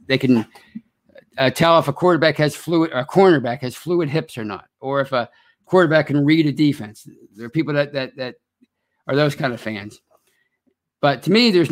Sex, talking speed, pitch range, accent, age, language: male, 205 wpm, 130-170 Hz, American, 50-69, English